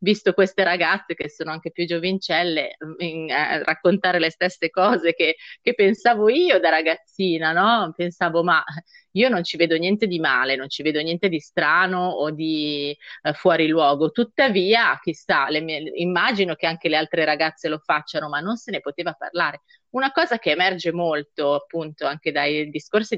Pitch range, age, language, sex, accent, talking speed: 155-210 Hz, 30-49, Italian, female, native, 165 wpm